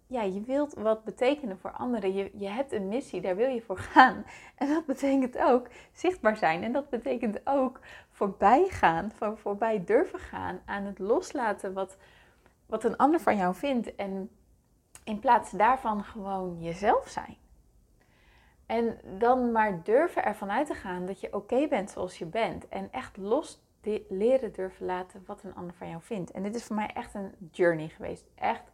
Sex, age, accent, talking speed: female, 20-39, Dutch, 180 wpm